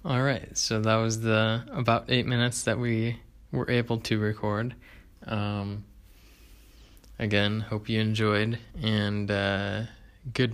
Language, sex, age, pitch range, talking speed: English, male, 20-39, 100-115 Hz, 130 wpm